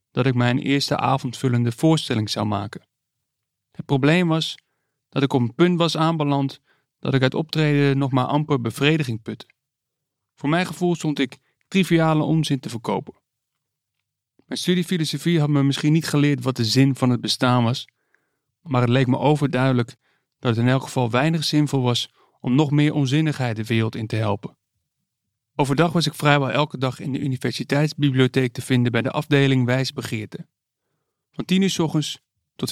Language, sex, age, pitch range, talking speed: Dutch, male, 40-59, 120-145 Hz, 170 wpm